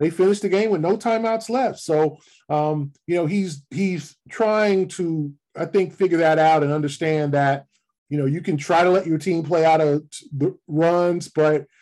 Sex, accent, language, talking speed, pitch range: male, American, English, 200 wpm, 140-175 Hz